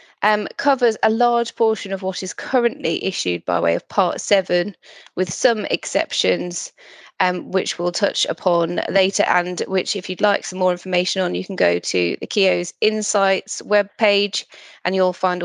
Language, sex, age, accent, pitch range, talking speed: English, female, 20-39, British, 180-210 Hz, 175 wpm